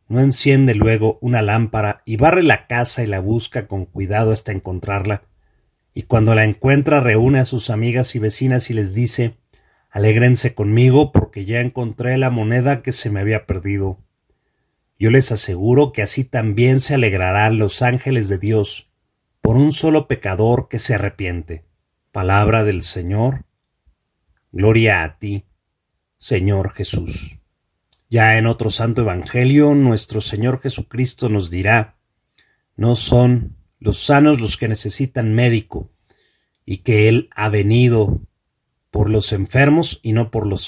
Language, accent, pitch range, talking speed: Spanish, Mexican, 100-125 Hz, 145 wpm